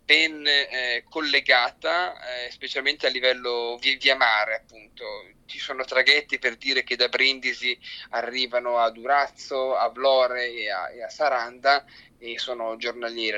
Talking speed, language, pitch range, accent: 145 wpm, Italian, 125-150 Hz, native